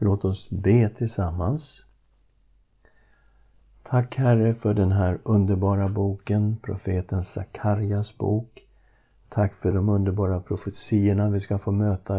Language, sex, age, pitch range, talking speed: English, male, 50-69, 95-115 Hz, 115 wpm